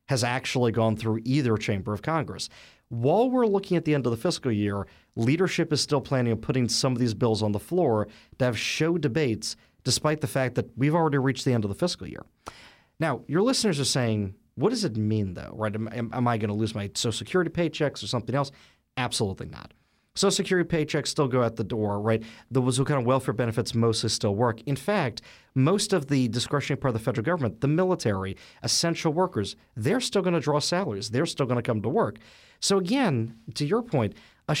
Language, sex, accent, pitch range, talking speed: English, male, American, 110-150 Hz, 215 wpm